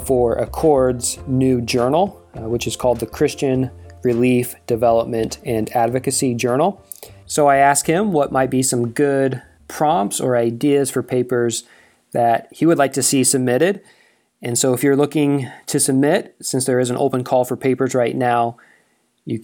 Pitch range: 120-140 Hz